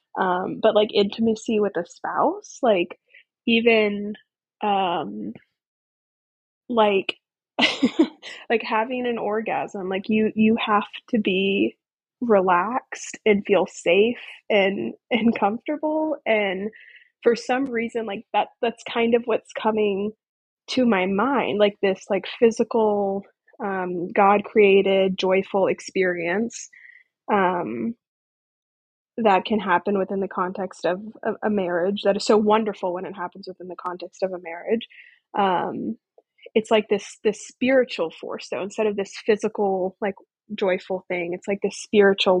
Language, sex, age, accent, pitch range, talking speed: English, female, 20-39, American, 190-235 Hz, 130 wpm